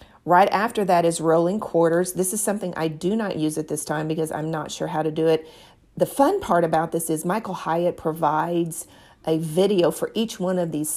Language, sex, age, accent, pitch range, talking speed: English, female, 40-59, American, 160-185 Hz, 220 wpm